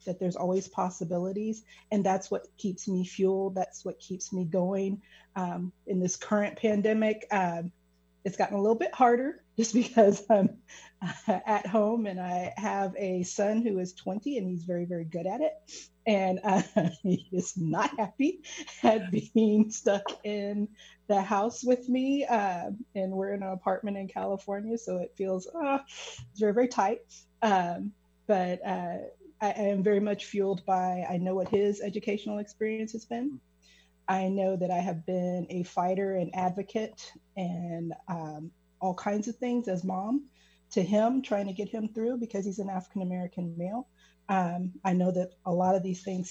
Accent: American